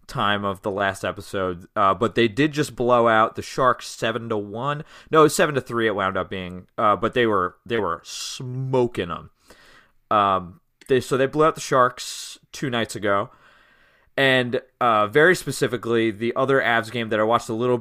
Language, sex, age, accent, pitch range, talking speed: English, male, 20-39, American, 100-125 Hz, 200 wpm